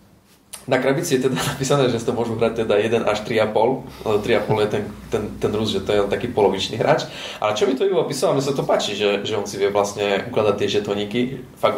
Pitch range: 100-130 Hz